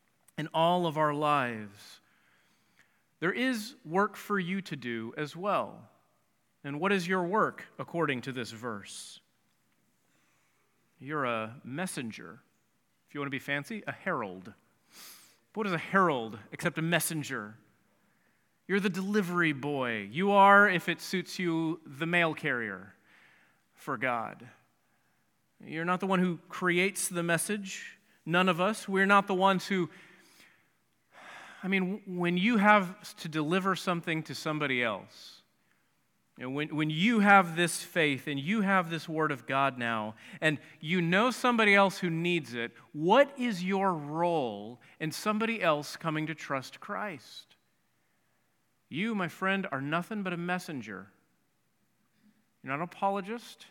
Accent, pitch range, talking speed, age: American, 150-195 Hz, 145 wpm, 40-59